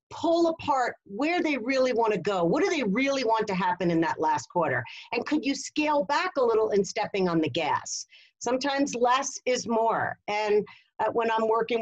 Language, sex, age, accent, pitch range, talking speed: English, female, 50-69, American, 215-275 Hz, 205 wpm